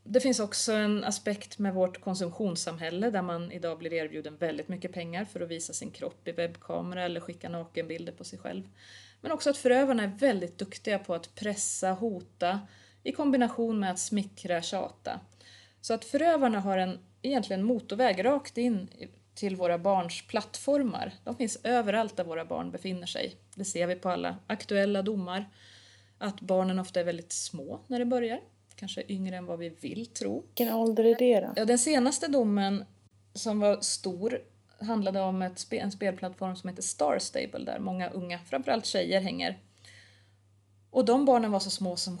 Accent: native